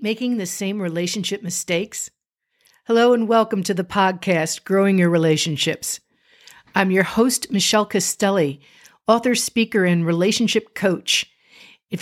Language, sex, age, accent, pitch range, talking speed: English, female, 50-69, American, 190-250 Hz, 125 wpm